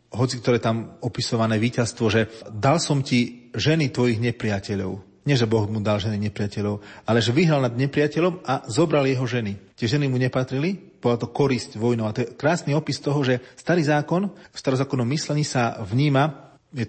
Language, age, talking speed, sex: Slovak, 40-59, 180 wpm, male